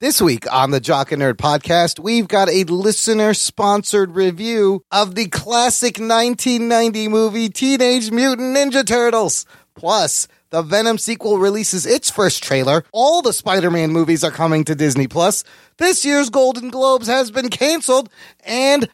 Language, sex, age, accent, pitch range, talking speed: English, male, 30-49, American, 160-240 Hz, 150 wpm